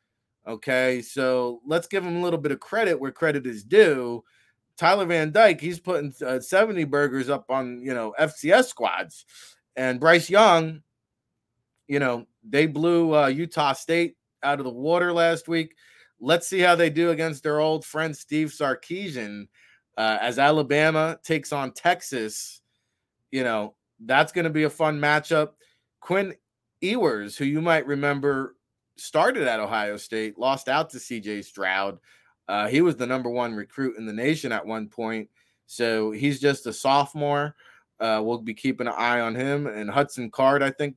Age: 30-49